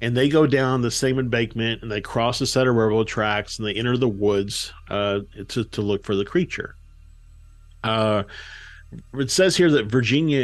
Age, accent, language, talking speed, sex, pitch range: 50-69, American, English, 190 wpm, male, 95-120 Hz